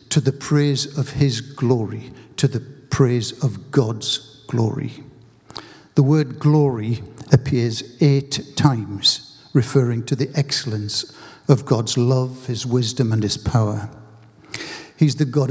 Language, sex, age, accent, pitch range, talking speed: English, male, 60-79, British, 120-145 Hz, 130 wpm